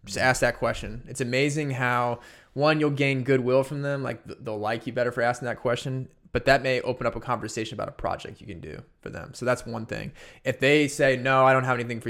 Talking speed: 250 wpm